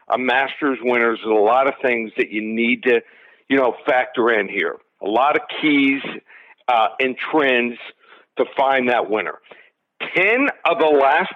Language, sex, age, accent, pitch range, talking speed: English, male, 50-69, American, 125-170 Hz, 170 wpm